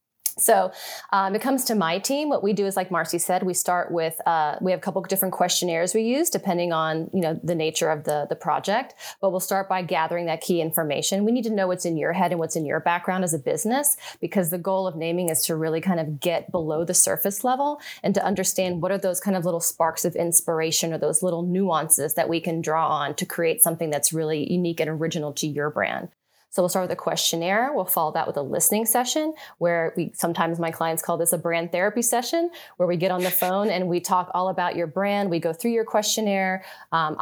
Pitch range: 165-195 Hz